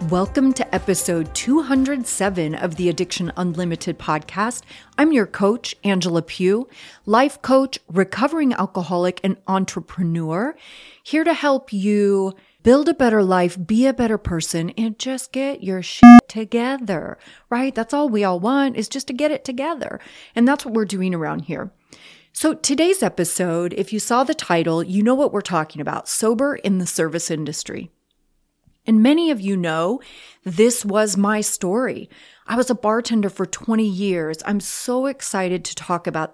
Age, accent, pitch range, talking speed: 30-49, American, 180-255 Hz, 160 wpm